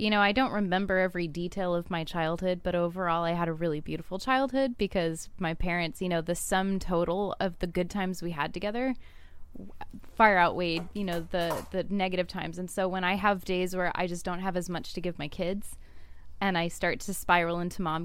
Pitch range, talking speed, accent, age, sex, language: 175-210 Hz, 215 wpm, American, 20-39, female, English